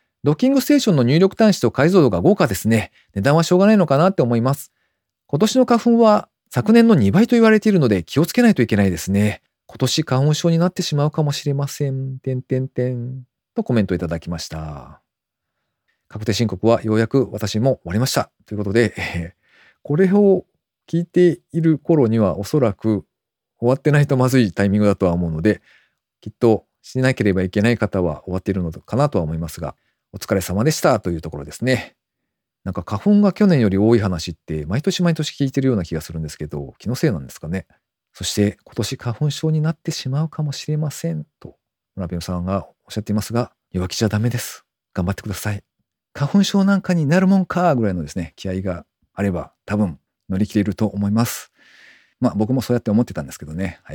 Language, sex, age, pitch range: Japanese, male, 40-59, 95-160 Hz